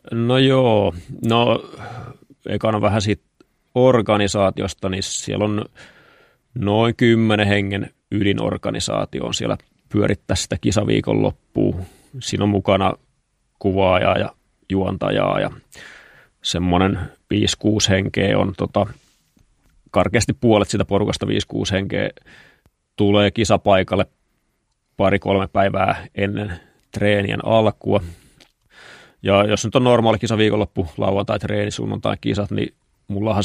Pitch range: 95-110 Hz